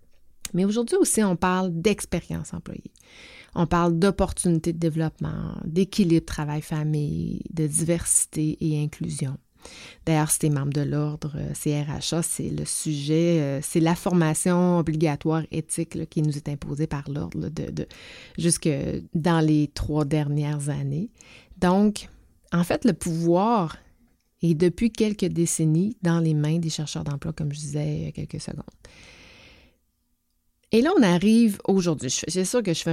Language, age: French, 30-49